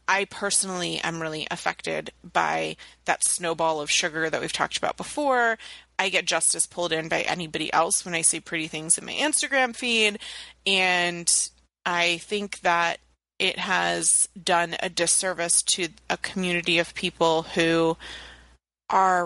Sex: female